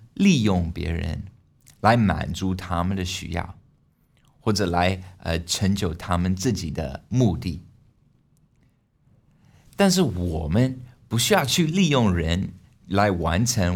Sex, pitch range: male, 90-135 Hz